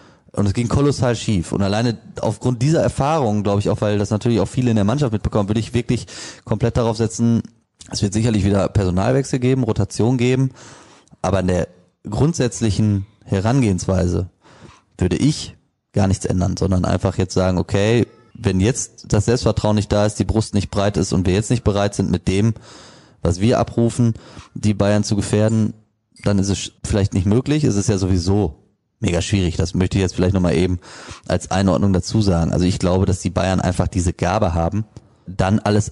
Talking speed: 190 wpm